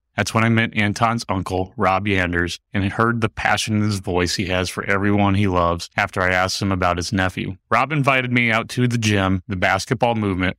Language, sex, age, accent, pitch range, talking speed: English, male, 30-49, American, 95-110 Hz, 215 wpm